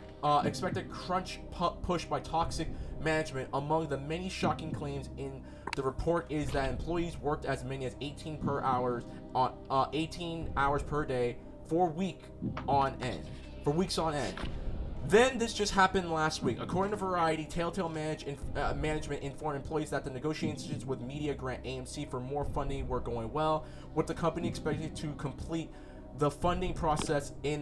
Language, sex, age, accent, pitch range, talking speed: English, male, 20-39, American, 130-160 Hz, 170 wpm